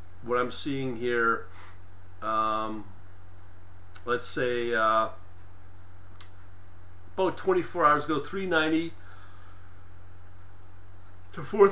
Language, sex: English, male